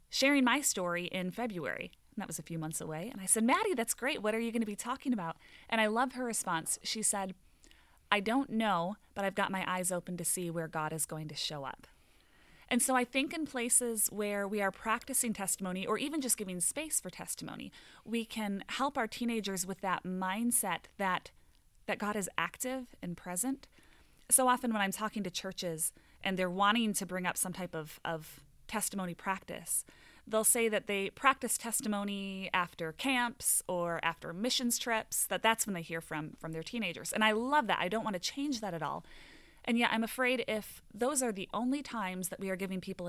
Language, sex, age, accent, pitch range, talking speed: English, female, 30-49, American, 180-235 Hz, 210 wpm